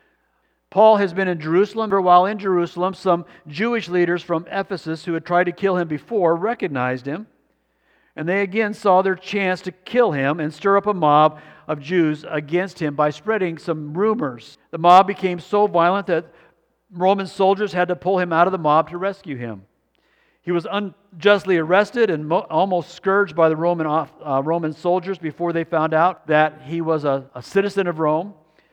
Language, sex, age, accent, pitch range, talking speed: English, male, 50-69, American, 140-190 Hz, 185 wpm